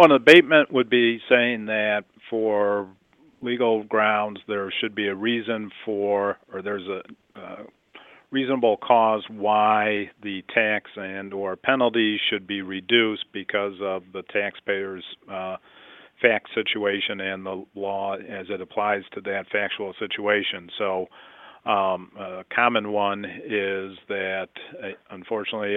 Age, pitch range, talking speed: 40-59, 100-110 Hz, 130 wpm